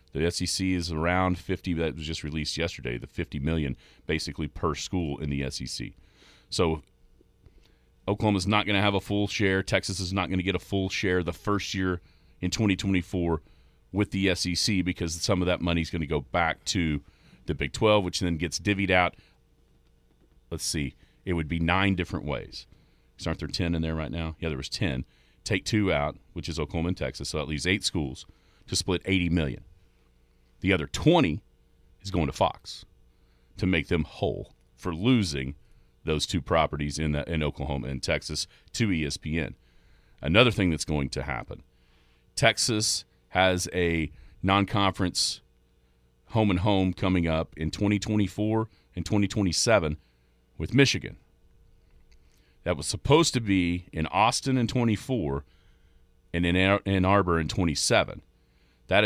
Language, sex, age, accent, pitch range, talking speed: English, male, 40-59, American, 75-95 Hz, 165 wpm